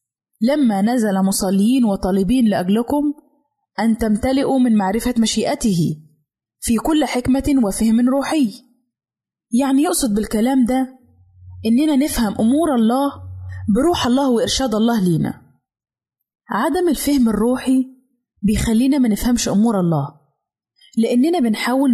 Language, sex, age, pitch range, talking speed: Arabic, female, 20-39, 205-265 Hz, 105 wpm